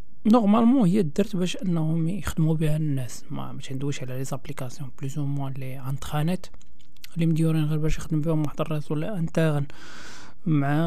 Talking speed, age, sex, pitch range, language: 155 wpm, 40-59, male, 150-190 Hz, Arabic